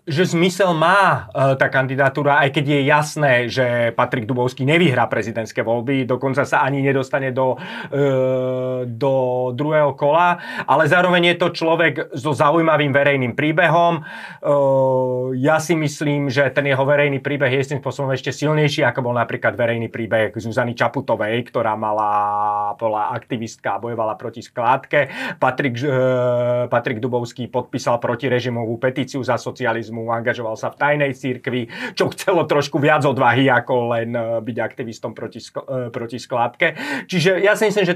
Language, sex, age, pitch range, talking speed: Slovak, male, 30-49, 125-160 Hz, 145 wpm